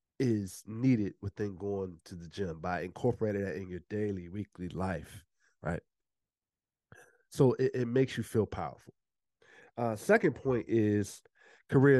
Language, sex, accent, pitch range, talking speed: English, male, American, 95-120 Hz, 140 wpm